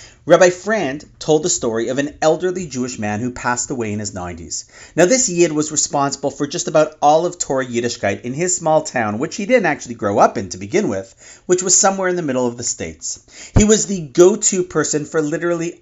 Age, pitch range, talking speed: 40-59, 115-180 Hz, 220 wpm